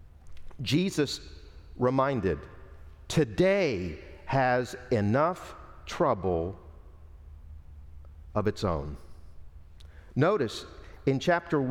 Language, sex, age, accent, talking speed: English, male, 50-69, American, 60 wpm